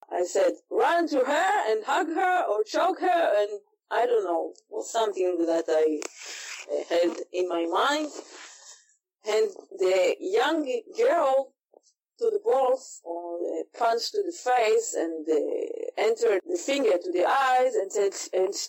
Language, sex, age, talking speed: English, female, 40-59, 155 wpm